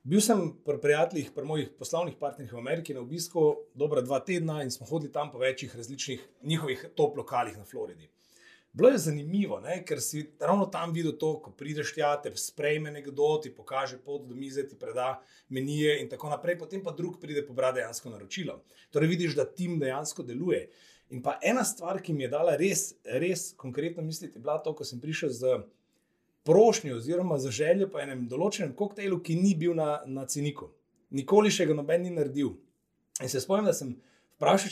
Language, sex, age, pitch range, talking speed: English, male, 30-49, 145-195 Hz, 185 wpm